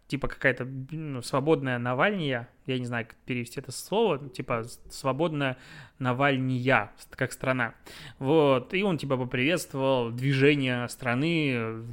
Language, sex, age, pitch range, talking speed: Russian, male, 20-39, 130-155 Hz, 120 wpm